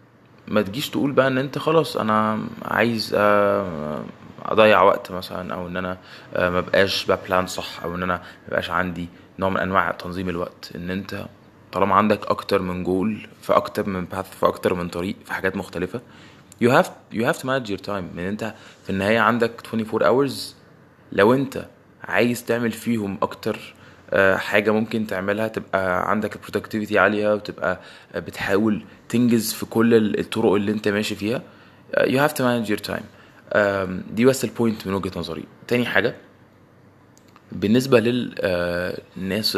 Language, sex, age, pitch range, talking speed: Arabic, male, 20-39, 95-115 Hz, 150 wpm